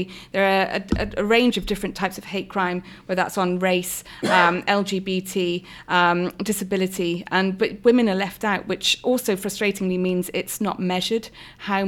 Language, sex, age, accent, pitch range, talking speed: English, female, 30-49, British, 180-205 Hz, 170 wpm